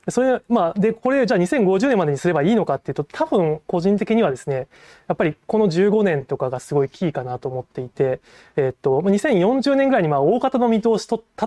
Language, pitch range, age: Japanese, 140-200 Hz, 20-39